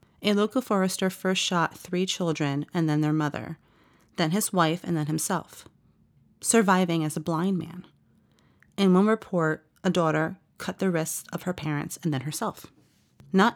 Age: 30-49